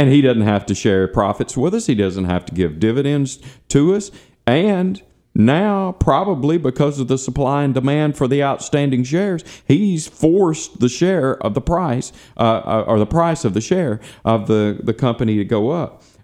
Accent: American